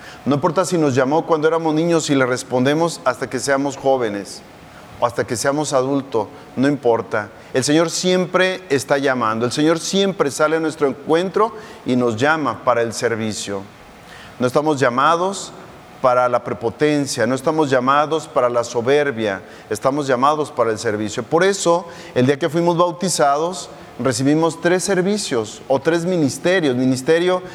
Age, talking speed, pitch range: 40-59, 155 wpm, 125-160 Hz